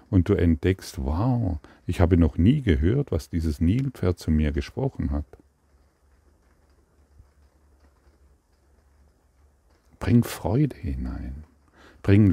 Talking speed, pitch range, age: 95 wpm, 75-95 Hz, 50-69